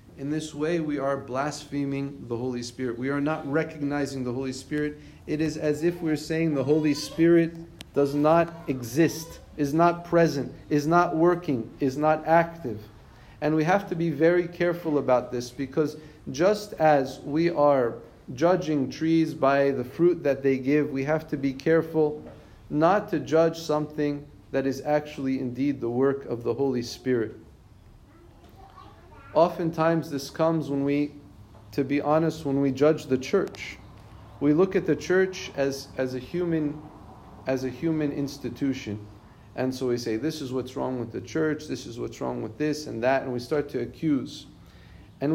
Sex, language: male, English